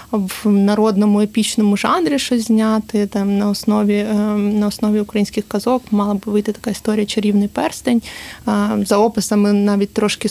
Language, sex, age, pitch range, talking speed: Ukrainian, female, 20-39, 210-230 Hz, 150 wpm